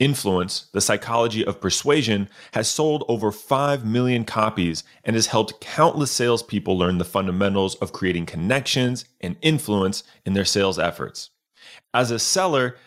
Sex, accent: male, American